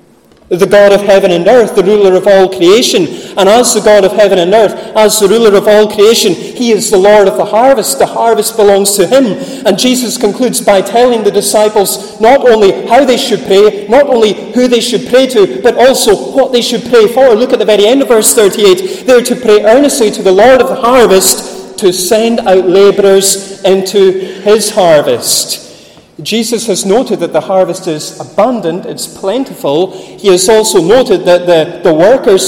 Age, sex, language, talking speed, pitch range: 30-49, male, English, 200 wpm, 175-225 Hz